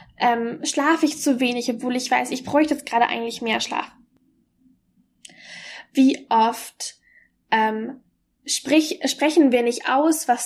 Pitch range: 230-275 Hz